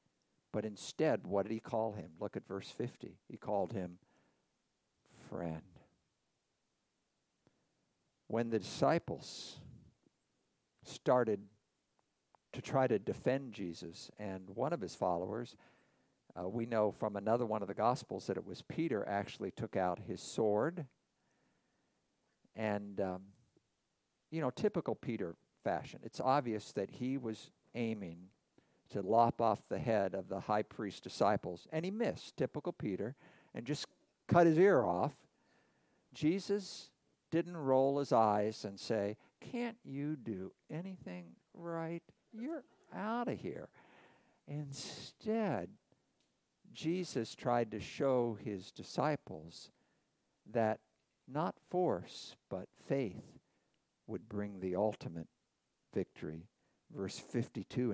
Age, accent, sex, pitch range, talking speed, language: 50-69, American, male, 100-155 Hz, 120 wpm, English